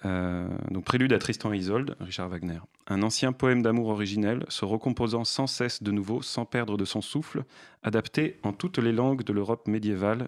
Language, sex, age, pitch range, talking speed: French, male, 30-49, 100-125 Hz, 200 wpm